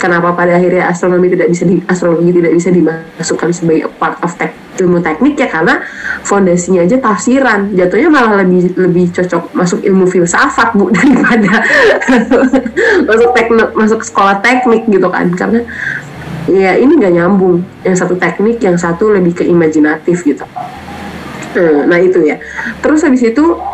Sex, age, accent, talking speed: female, 20-39, native, 150 wpm